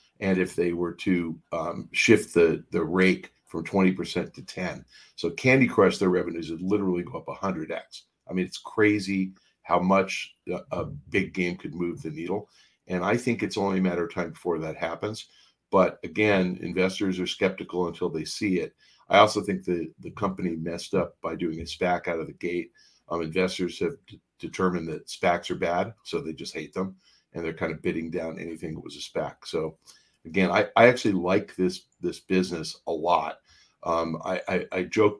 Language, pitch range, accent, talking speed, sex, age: English, 90-100 Hz, American, 200 wpm, male, 50-69